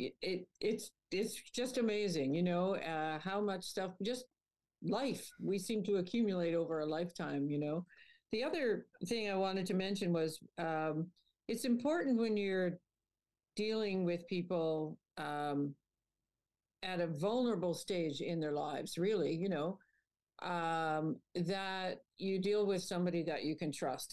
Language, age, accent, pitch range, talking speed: English, 50-69, American, 150-190 Hz, 150 wpm